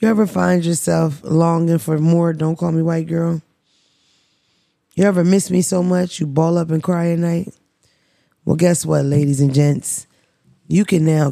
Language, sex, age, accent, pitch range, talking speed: English, female, 20-39, American, 150-180 Hz, 180 wpm